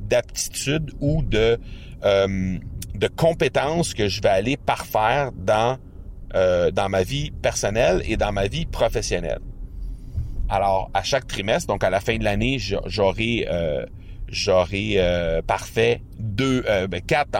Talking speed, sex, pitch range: 135 wpm, male, 95-135 Hz